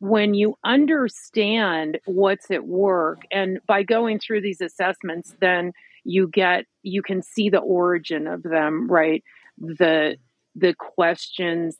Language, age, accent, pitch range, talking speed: English, 40-59, American, 175-215 Hz, 130 wpm